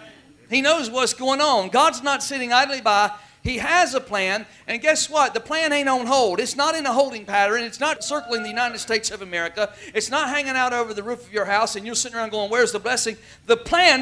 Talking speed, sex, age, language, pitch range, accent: 240 wpm, male, 40-59, English, 225-300 Hz, American